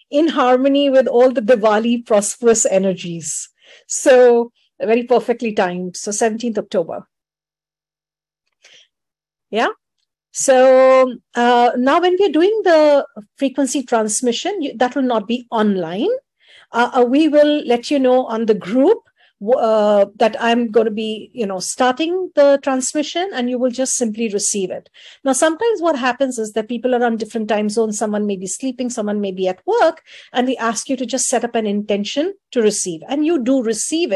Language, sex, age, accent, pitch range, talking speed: English, female, 50-69, Indian, 210-270 Hz, 165 wpm